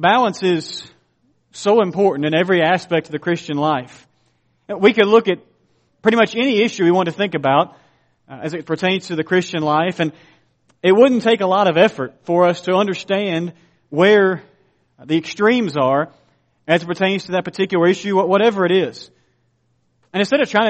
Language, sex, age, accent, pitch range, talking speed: English, male, 40-59, American, 170-195 Hz, 175 wpm